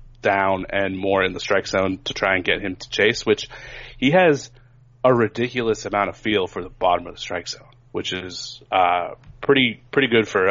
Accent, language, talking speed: American, English, 205 wpm